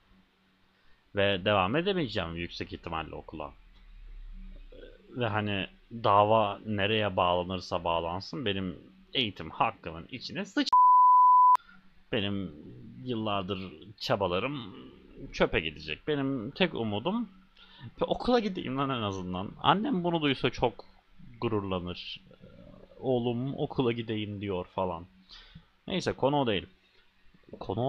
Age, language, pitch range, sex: 30-49, Turkish, 95-125 Hz, male